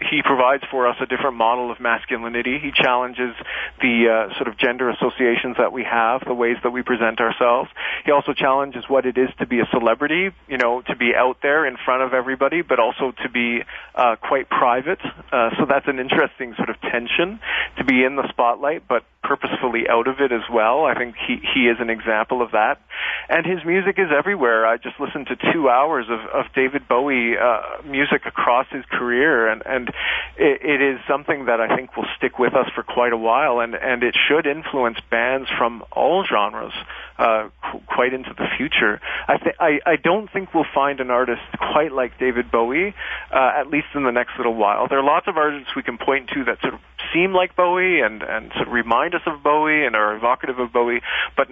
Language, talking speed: English, 215 wpm